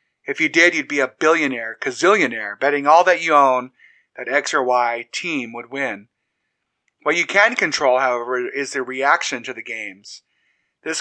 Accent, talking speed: American, 175 wpm